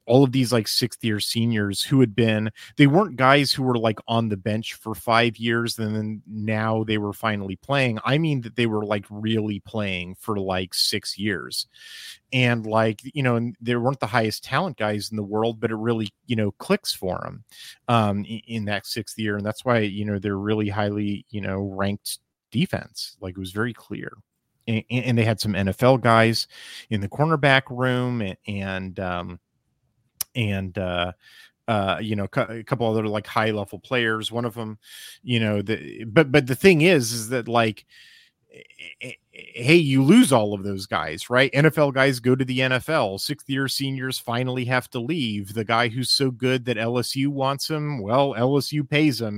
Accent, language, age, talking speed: American, English, 30-49, 190 wpm